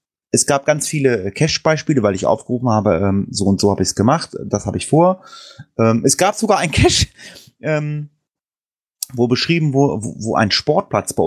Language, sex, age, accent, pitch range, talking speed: German, male, 30-49, German, 100-140 Hz, 190 wpm